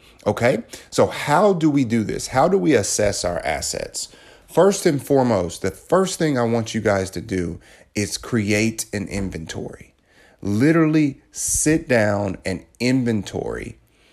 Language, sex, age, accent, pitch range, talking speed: English, male, 30-49, American, 95-125 Hz, 145 wpm